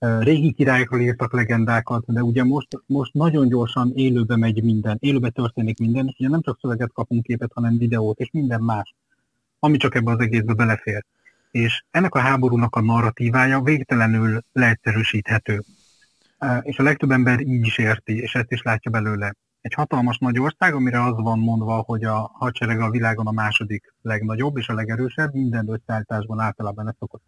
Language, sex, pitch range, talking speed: Hungarian, male, 110-130 Hz, 170 wpm